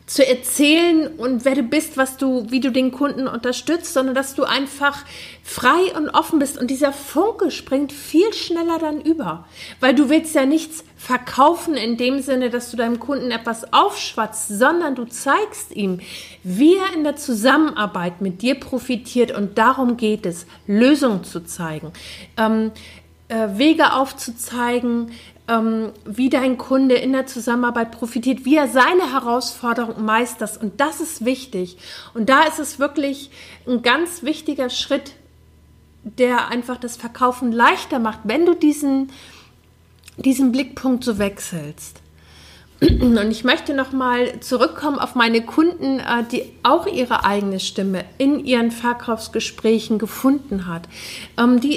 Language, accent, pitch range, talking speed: German, German, 235-285 Hz, 140 wpm